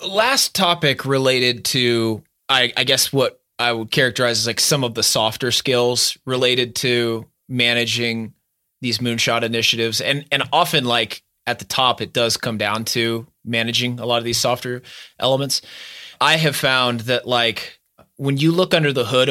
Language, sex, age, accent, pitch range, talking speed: English, male, 20-39, American, 115-140 Hz, 170 wpm